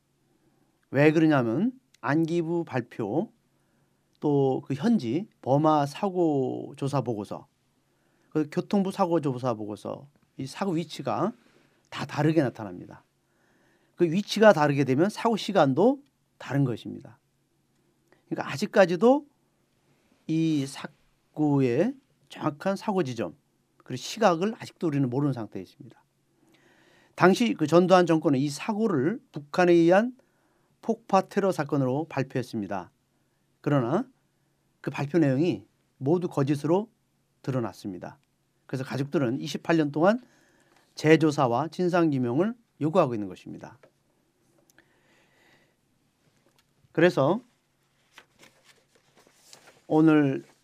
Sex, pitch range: male, 130-180 Hz